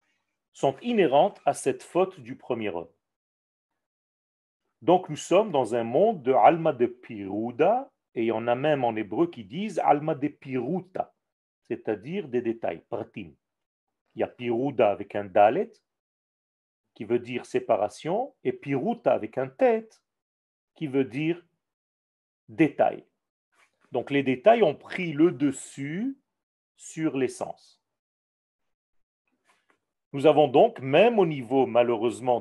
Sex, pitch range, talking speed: male, 115-170 Hz, 160 wpm